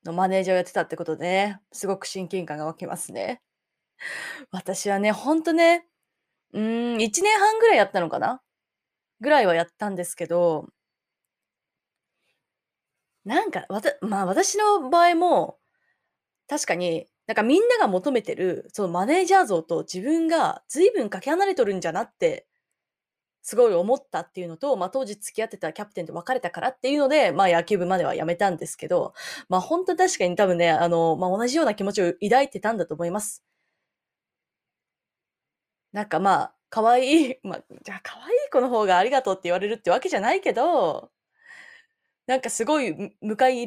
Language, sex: Japanese, female